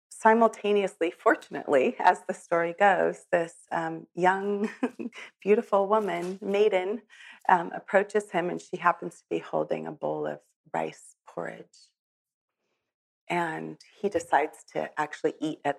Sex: female